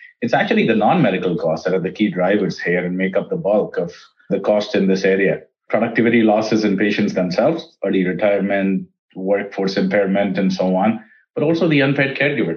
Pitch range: 100-120 Hz